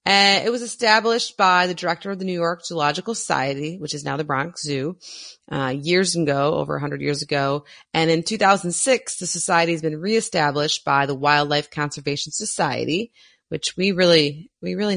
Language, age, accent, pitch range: English, 30-49, American, 150-200 Hz